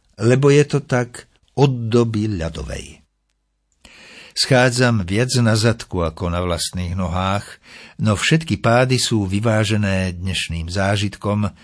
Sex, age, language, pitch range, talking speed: male, 60-79, Slovak, 90-115 Hz, 115 wpm